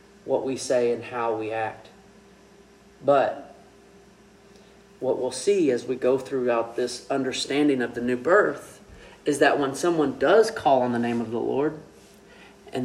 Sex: male